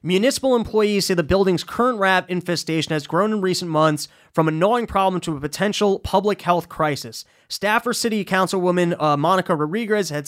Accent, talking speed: American, 175 wpm